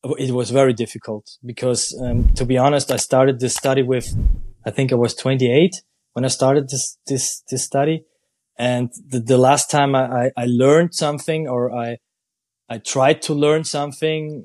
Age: 20-39